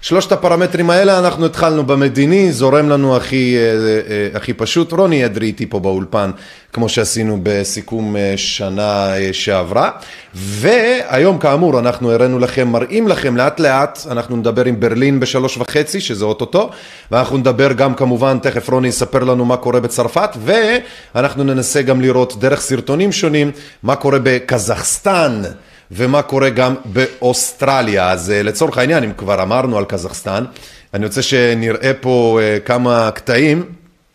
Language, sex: Hebrew, male